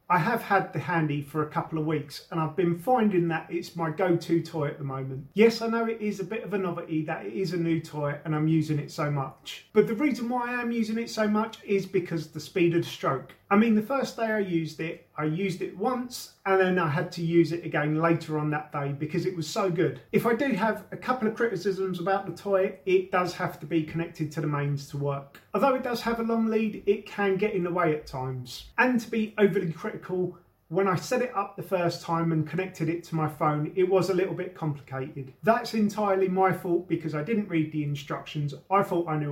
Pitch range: 155-200 Hz